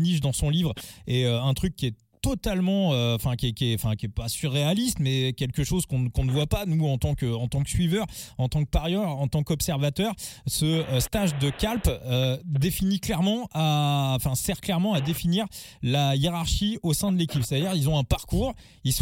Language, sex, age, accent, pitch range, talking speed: French, male, 20-39, French, 130-175 Hz, 215 wpm